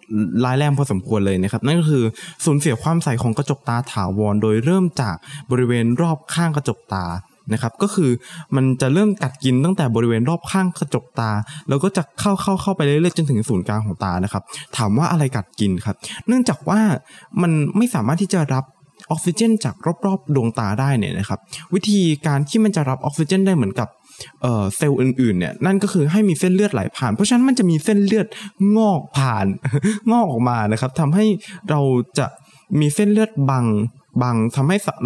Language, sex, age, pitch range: Thai, male, 20-39, 115-170 Hz